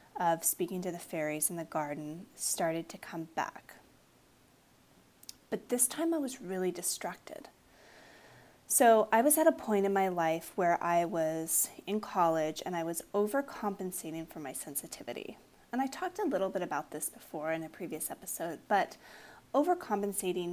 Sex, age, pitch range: female, 30-49, 165-210 Hz